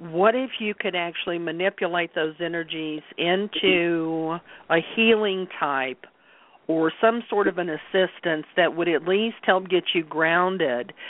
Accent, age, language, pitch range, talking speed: American, 50-69, English, 160-195 Hz, 140 wpm